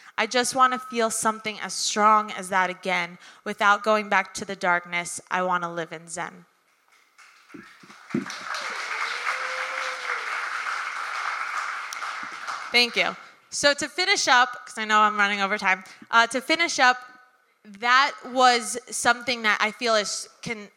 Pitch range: 195-230 Hz